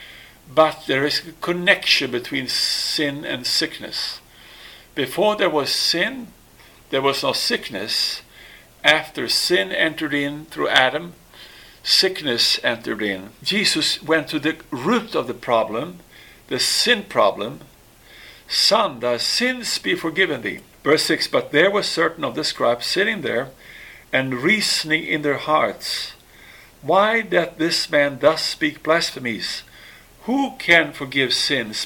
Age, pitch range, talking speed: 50-69, 140-175 Hz, 130 wpm